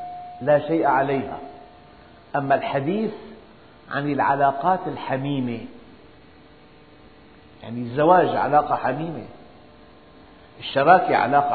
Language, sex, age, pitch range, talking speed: Arabic, male, 50-69, 125-175 Hz, 75 wpm